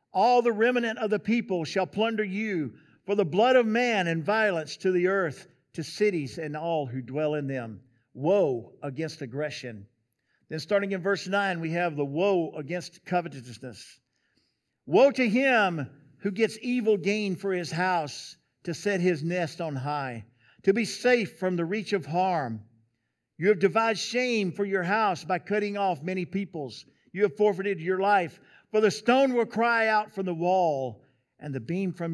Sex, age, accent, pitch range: male, 50-69, American, 145-205 Hz